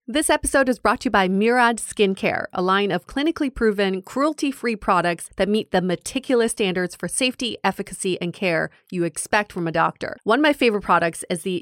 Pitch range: 175-225 Hz